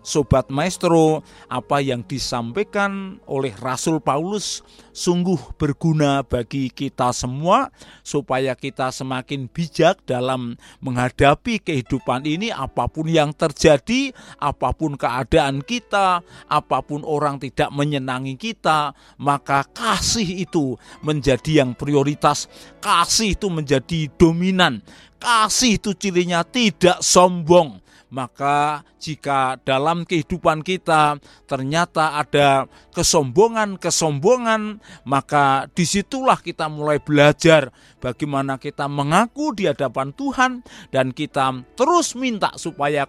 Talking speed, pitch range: 100 wpm, 135-175 Hz